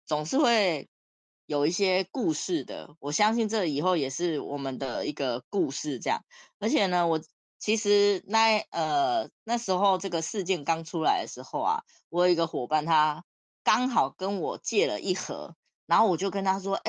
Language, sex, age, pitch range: Chinese, female, 20-39, 155-215 Hz